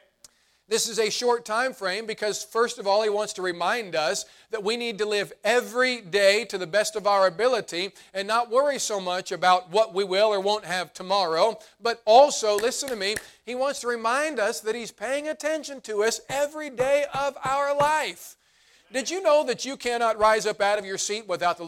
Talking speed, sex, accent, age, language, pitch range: 210 wpm, male, American, 40-59, English, 185-250 Hz